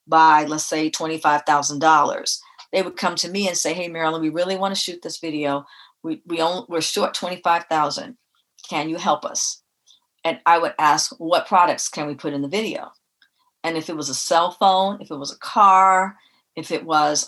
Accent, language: American, English